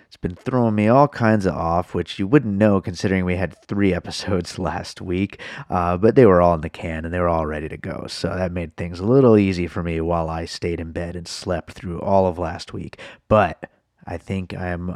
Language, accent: English, American